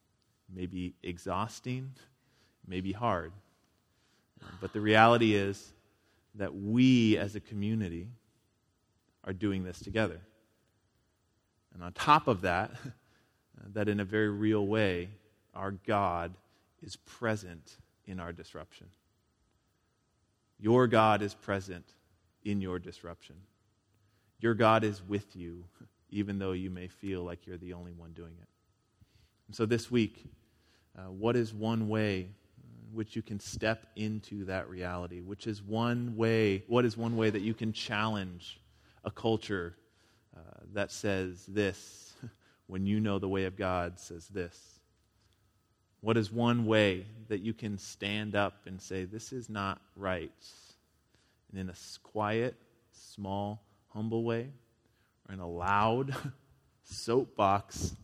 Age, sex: 30-49, male